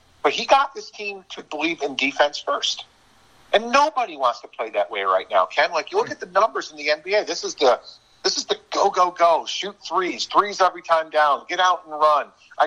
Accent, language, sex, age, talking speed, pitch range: American, English, male, 50-69, 230 wpm, 130-190 Hz